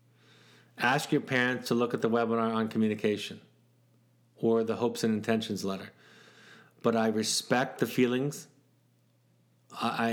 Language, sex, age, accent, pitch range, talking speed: English, male, 30-49, American, 115-135 Hz, 130 wpm